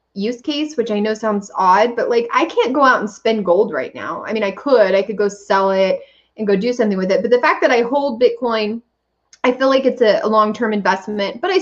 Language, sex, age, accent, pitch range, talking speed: English, female, 20-39, American, 195-260 Hz, 260 wpm